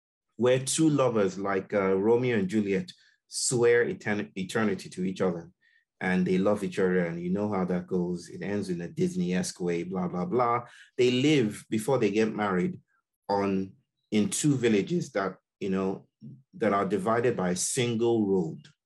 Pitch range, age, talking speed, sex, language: 95-130 Hz, 30-49, 170 wpm, male, English